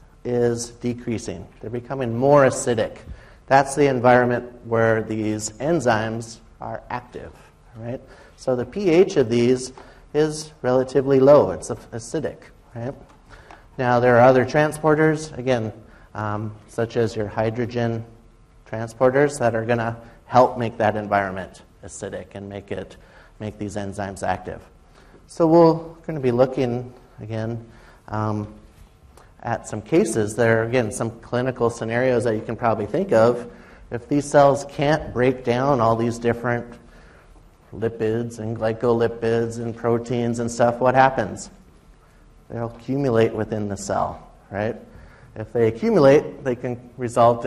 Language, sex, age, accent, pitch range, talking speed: English, male, 30-49, American, 110-130 Hz, 130 wpm